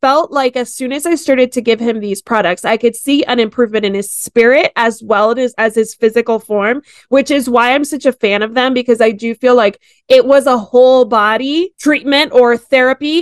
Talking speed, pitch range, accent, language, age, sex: 225 wpm, 225-265 Hz, American, English, 20-39, female